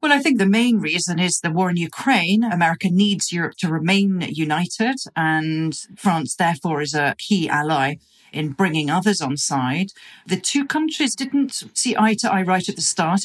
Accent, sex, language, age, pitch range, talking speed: British, female, English, 40-59, 165-215 Hz, 185 wpm